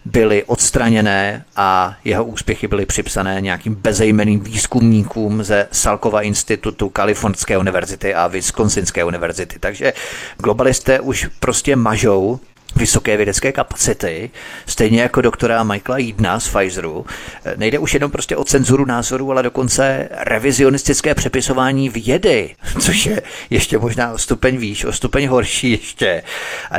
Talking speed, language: 130 wpm, Czech